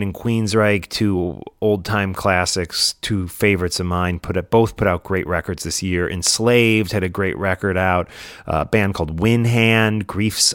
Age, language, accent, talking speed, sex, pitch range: 30-49, English, American, 180 wpm, male, 90-105 Hz